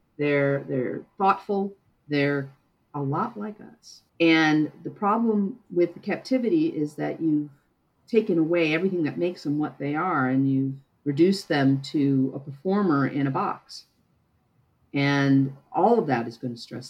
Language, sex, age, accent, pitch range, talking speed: English, female, 50-69, American, 135-170 Hz, 155 wpm